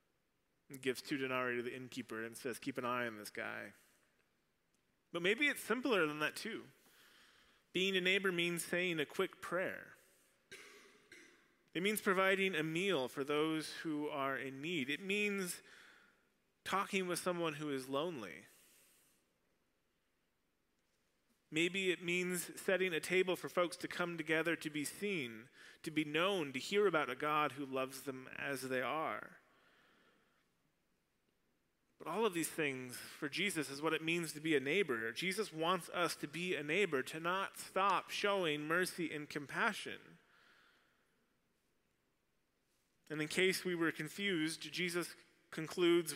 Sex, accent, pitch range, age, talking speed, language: male, American, 145-180 Hz, 30-49, 145 wpm, English